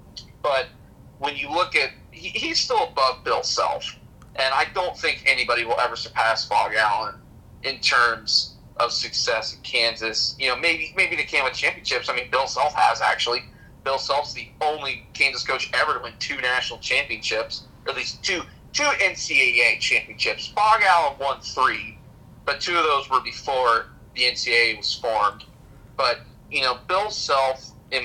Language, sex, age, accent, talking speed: English, male, 30-49, American, 170 wpm